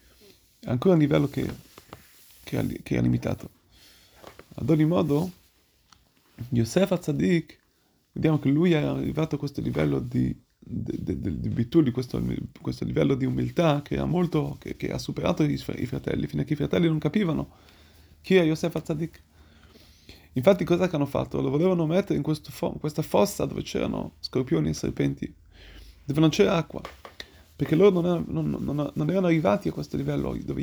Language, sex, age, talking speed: Italian, male, 30-49, 165 wpm